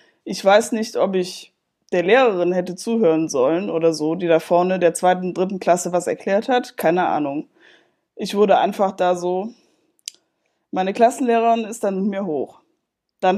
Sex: female